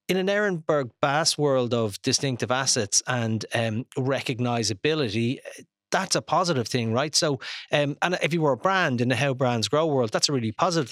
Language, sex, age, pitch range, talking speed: English, male, 30-49, 125-160 Hz, 185 wpm